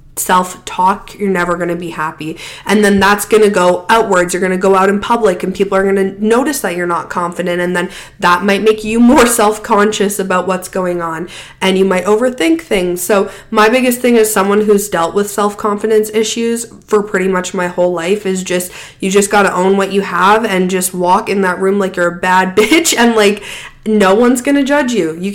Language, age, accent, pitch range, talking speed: English, 20-39, American, 185-215 Hz, 225 wpm